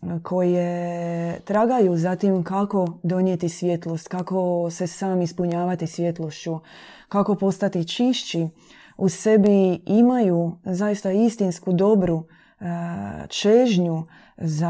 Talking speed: 100 wpm